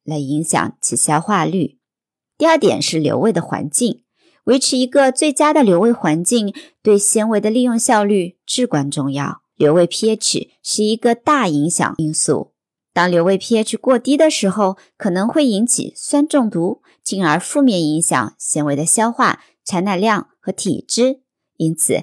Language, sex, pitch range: Chinese, male, 170-260 Hz